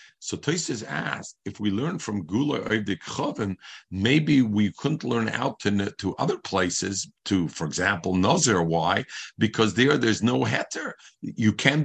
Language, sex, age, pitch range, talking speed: English, male, 50-69, 100-140 Hz, 150 wpm